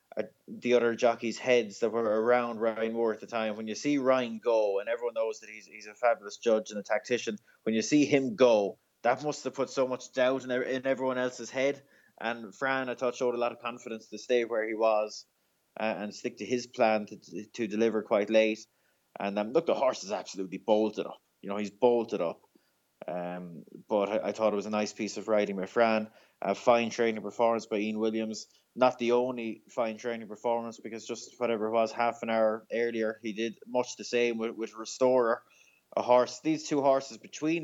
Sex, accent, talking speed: male, Irish, 215 wpm